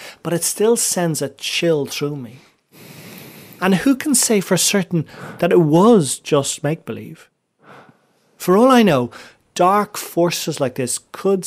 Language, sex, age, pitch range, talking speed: English, male, 30-49, 115-175 Hz, 145 wpm